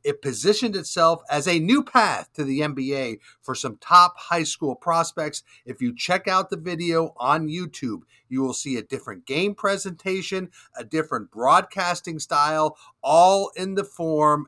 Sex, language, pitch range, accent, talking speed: male, English, 135-180 Hz, American, 160 wpm